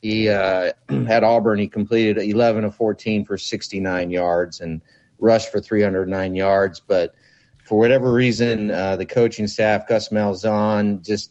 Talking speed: 150 wpm